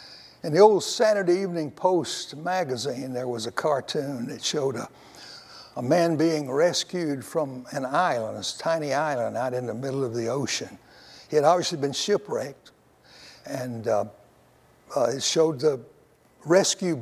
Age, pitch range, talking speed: 60-79, 145-180 Hz, 150 wpm